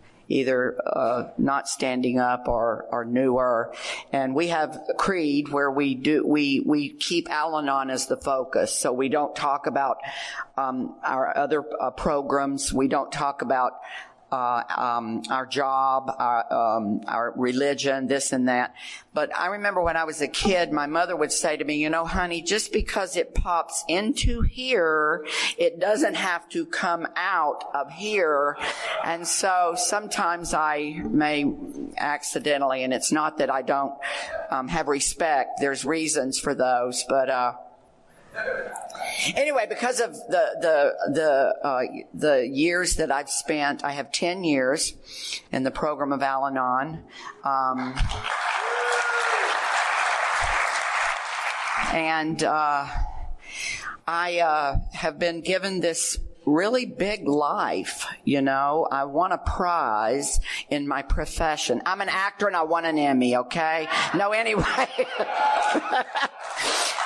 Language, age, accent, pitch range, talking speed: English, 50-69, American, 135-175 Hz, 135 wpm